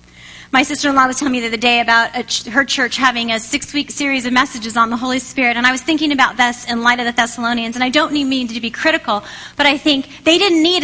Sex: female